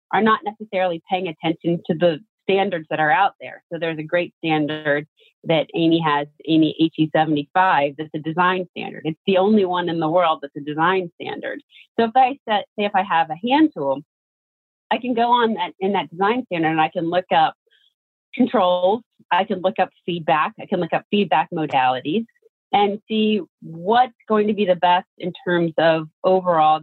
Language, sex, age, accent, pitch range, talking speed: English, female, 30-49, American, 155-200 Hz, 190 wpm